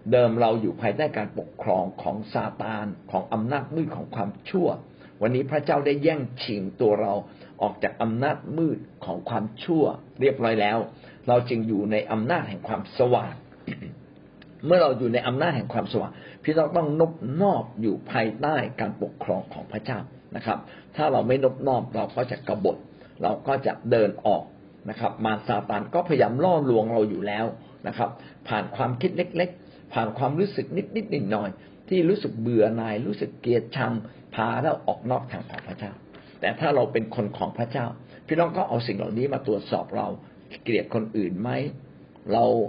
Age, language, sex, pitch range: 60-79, Thai, male, 110-145 Hz